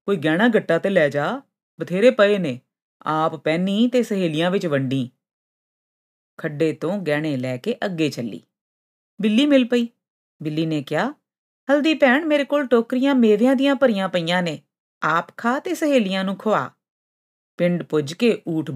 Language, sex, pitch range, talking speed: Punjabi, female, 150-235 Hz, 150 wpm